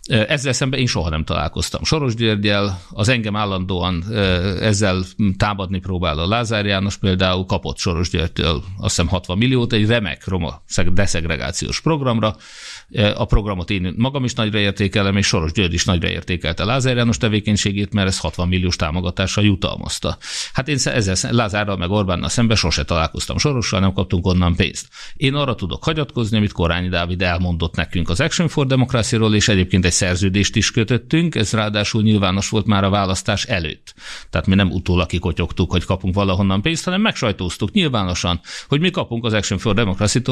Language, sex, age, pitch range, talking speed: Hungarian, male, 50-69, 90-120 Hz, 165 wpm